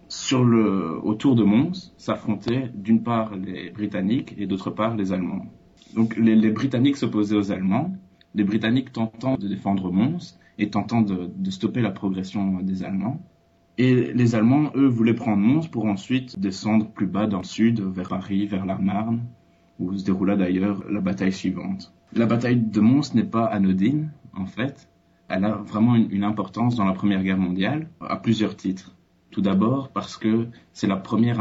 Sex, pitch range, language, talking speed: male, 95-115 Hz, French, 180 wpm